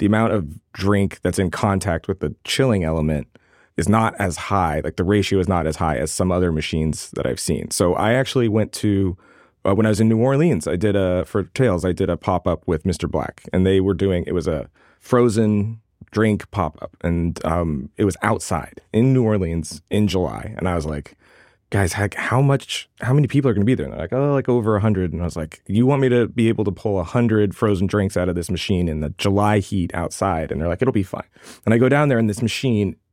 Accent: American